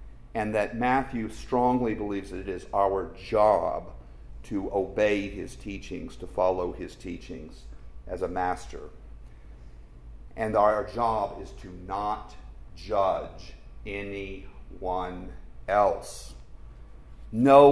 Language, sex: English, male